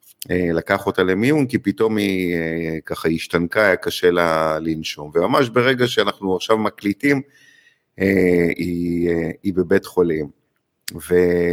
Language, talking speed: Hebrew, 120 wpm